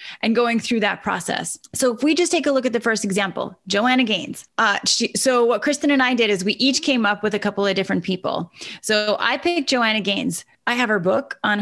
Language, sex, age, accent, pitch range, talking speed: English, female, 20-39, American, 210-255 Hz, 245 wpm